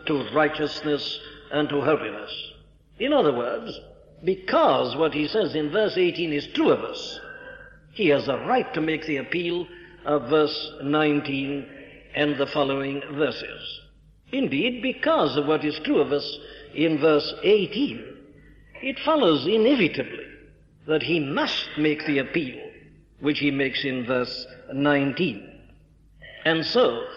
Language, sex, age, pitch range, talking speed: English, male, 60-79, 145-175 Hz, 135 wpm